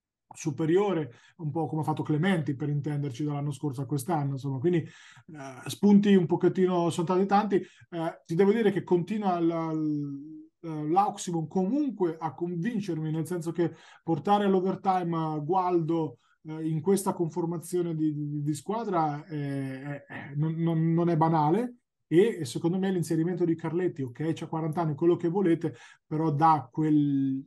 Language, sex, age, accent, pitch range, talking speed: Italian, male, 20-39, native, 150-175 Hz, 160 wpm